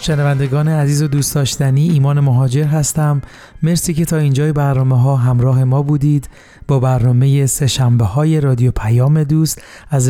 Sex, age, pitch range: male, 30-49, 130-150 Hz